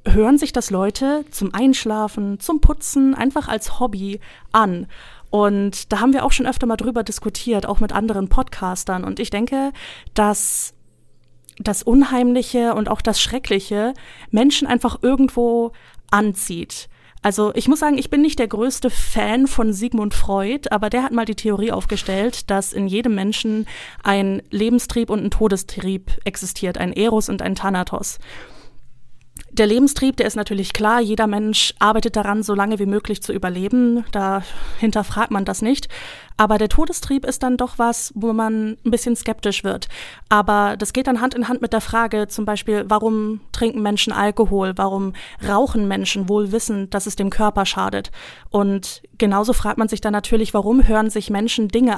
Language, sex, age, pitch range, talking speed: German, female, 30-49, 200-235 Hz, 170 wpm